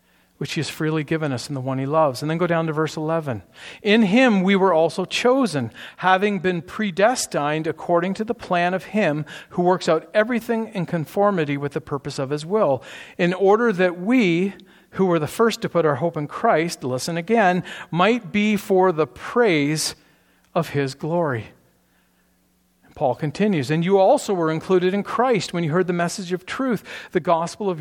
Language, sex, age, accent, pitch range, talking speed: English, male, 50-69, American, 150-200 Hz, 190 wpm